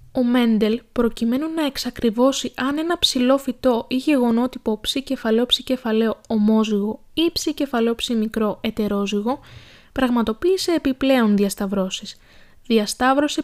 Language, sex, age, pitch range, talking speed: Greek, female, 20-39, 215-270 Hz, 95 wpm